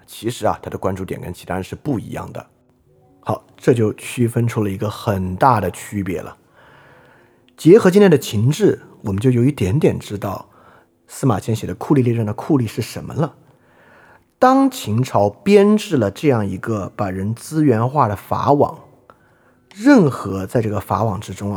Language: Chinese